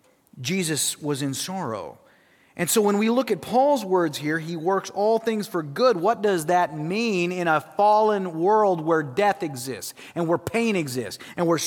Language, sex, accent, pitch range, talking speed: English, male, American, 135-210 Hz, 185 wpm